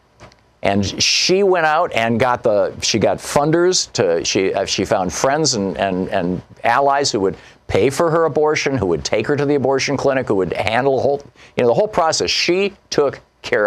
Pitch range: 115-155 Hz